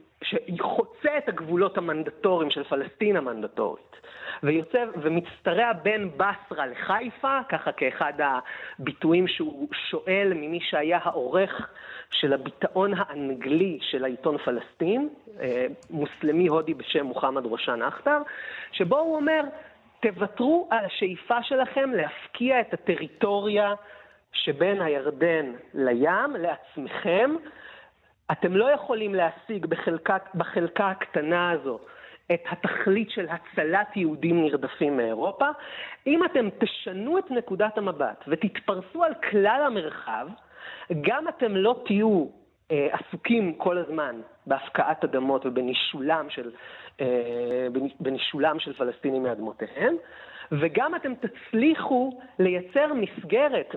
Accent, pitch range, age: native, 160-245 Hz, 30-49